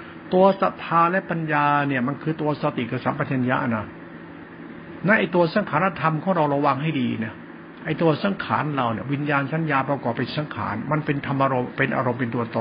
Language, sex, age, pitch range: Thai, male, 60-79, 130-170 Hz